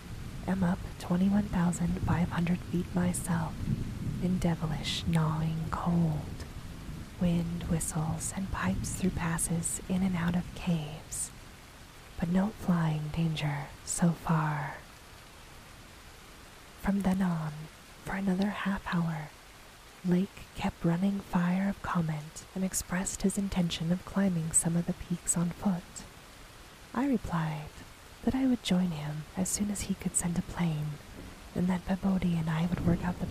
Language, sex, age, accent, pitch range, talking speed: English, female, 20-39, American, 155-180 Hz, 135 wpm